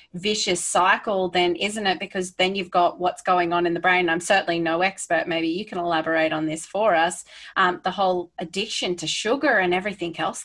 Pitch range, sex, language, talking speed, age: 170-195 Hz, female, English, 205 wpm, 20-39